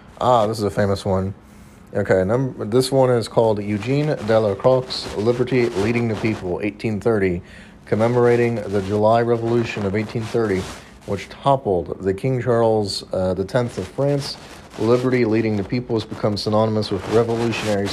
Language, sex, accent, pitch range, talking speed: English, male, American, 95-115 Hz, 145 wpm